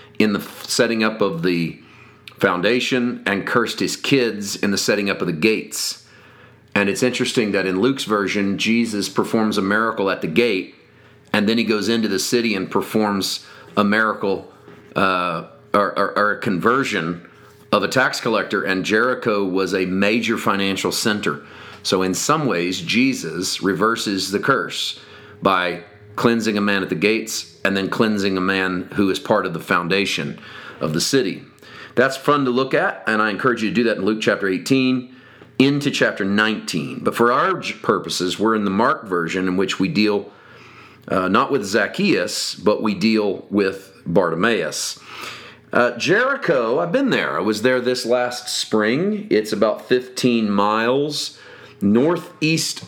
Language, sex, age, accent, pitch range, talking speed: English, male, 40-59, American, 95-125 Hz, 165 wpm